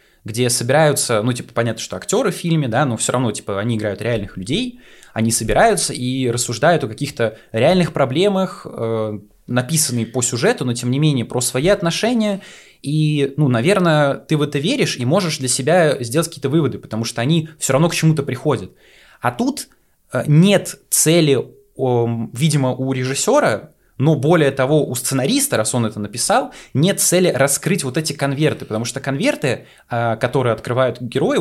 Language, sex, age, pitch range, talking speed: Russian, male, 20-39, 120-165 Hz, 165 wpm